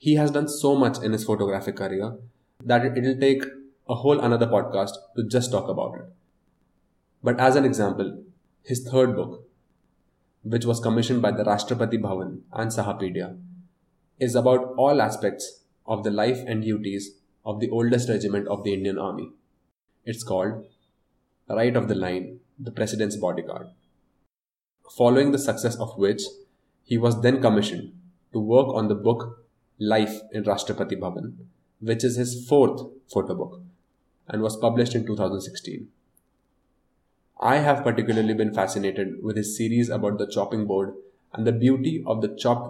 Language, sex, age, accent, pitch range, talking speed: English, male, 20-39, Indian, 100-125 Hz, 155 wpm